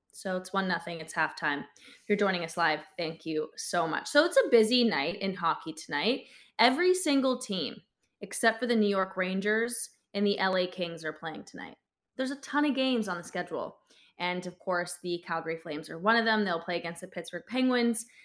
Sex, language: female, English